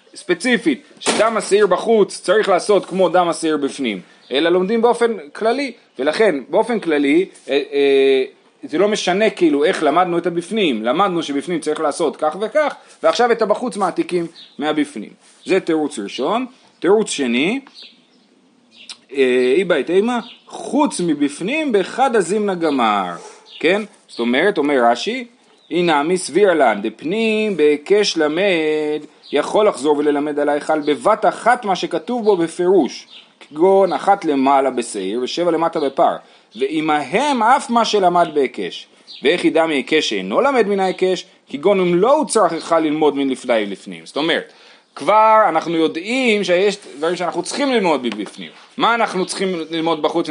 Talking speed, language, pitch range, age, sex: 140 wpm, Hebrew, 155-230 Hz, 30-49, male